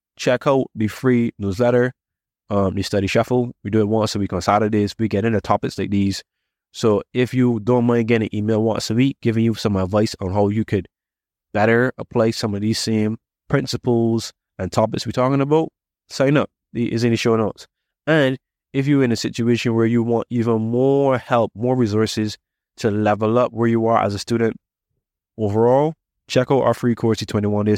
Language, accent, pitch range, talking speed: English, American, 100-125 Hz, 200 wpm